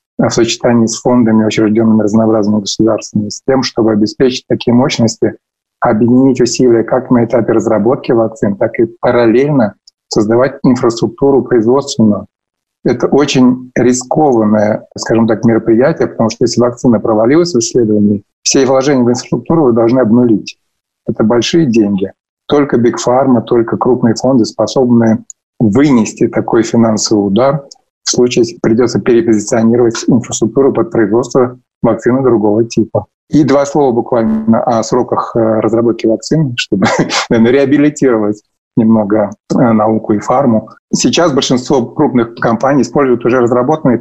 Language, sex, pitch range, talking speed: Russian, male, 110-125 Hz, 125 wpm